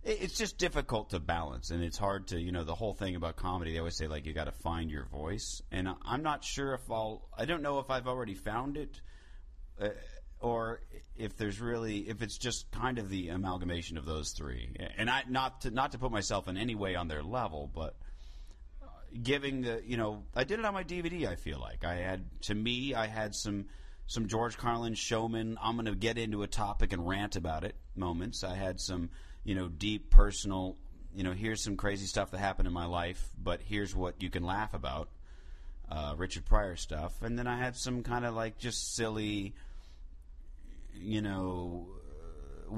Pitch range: 85-110 Hz